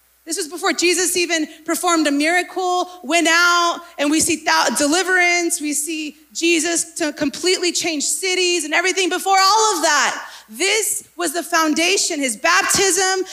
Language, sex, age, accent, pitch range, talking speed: English, female, 30-49, American, 270-360 Hz, 150 wpm